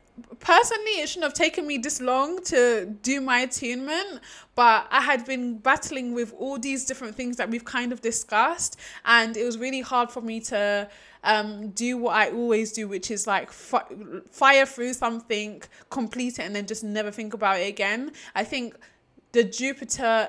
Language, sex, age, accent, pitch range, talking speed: English, female, 20-39, British, 215-245 Hz, 180 wpm